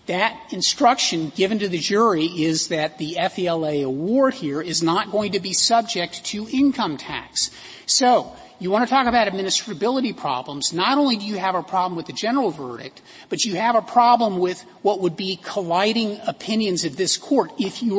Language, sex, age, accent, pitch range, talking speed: English, male, 40-59, American, 170-235 Hz, 185 wpm